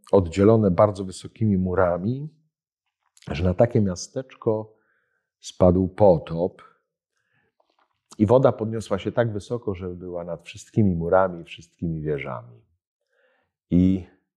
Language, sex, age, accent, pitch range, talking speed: Polish, male, 50-69, native, 90-120 Hz, 100 wpm